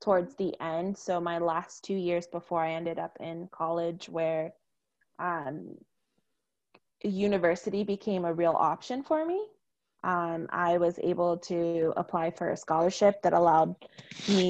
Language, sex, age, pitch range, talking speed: English, female, 20-39, 165-185 Hz, 145 wpm